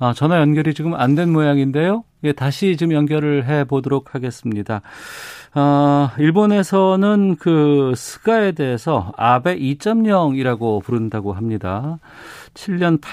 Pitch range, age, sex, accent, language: 110-150 Hz, 40-59, male, native, Korean